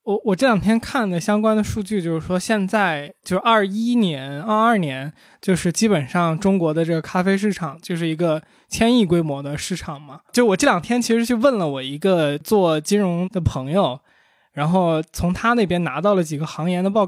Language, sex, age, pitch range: Chinese, male, 20-39, 160-215 Hz